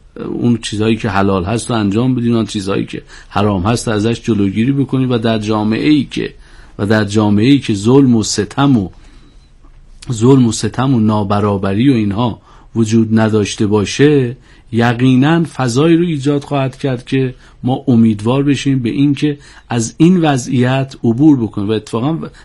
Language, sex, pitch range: Persian, male, 110-135 Hz